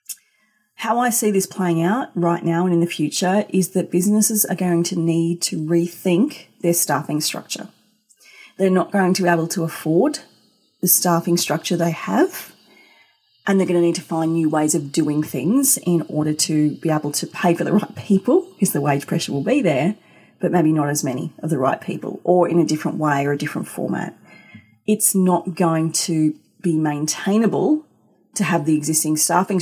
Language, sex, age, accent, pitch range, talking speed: English, female, 30-49, Australian, 155-195 Hz, 195 wpm